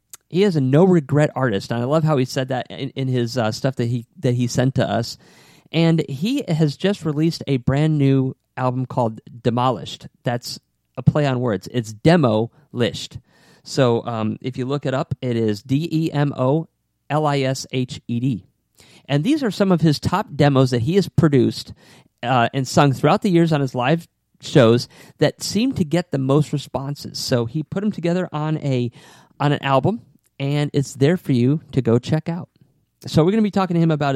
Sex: male